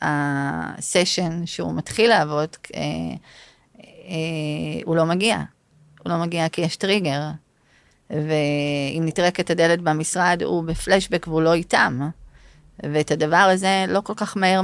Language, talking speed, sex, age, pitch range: Hebrew, 125 wpm, female, 30-49, 150-180 Hz